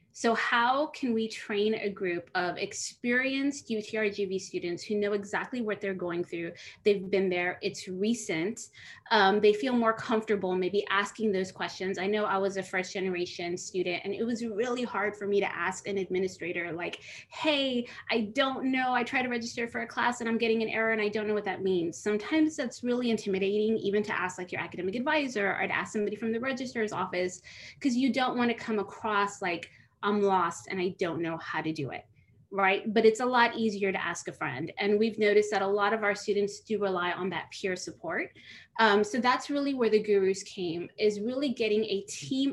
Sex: female